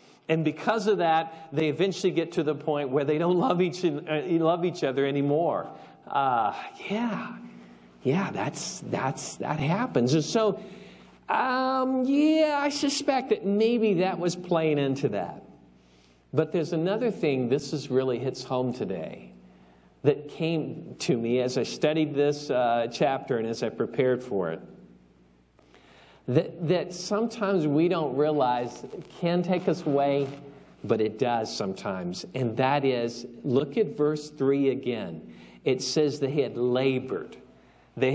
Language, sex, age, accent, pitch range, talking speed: English, male, 50-69, American, 125-175 Hz, 150 wpm